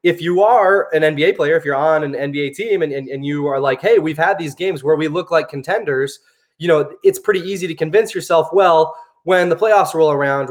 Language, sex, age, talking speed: English, male, 20-39, 240 wpm